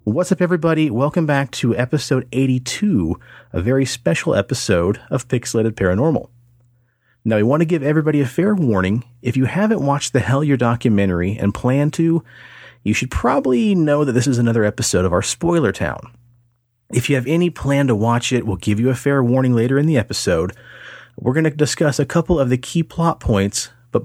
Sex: male